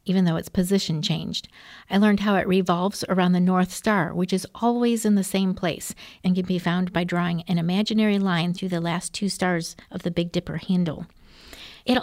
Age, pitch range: 50-69, 175-220 Hz